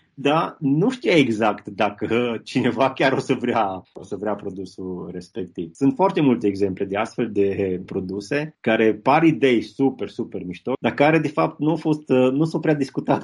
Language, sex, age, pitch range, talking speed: Romanian, male, 20-39, 105-130 Hz, 180 wpm